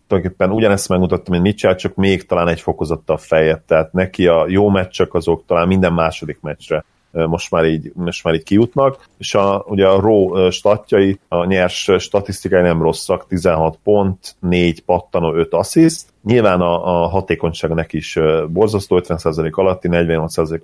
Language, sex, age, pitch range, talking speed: Hungarian, male, 30-49, 85-100 Hz, 165 wpm